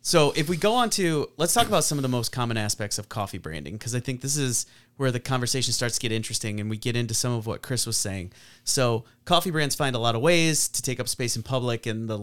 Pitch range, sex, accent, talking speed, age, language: 115-140 Hz, male, American, 275 wpm, 30-49, English